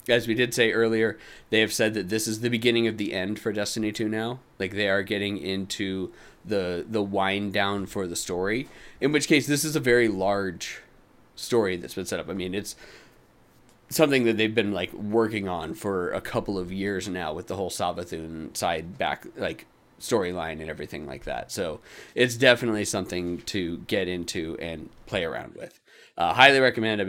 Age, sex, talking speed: 30-49, male, 195 wpm